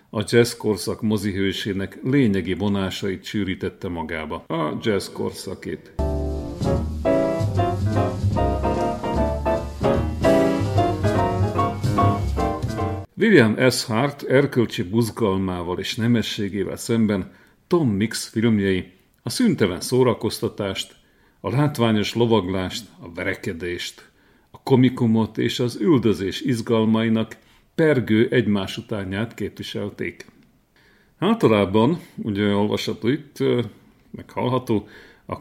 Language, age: Hungarian, 50-69